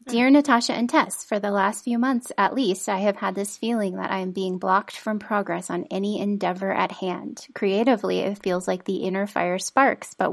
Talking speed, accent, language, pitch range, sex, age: 215 wpm, American, English, 185-225 Hz, female, 30-49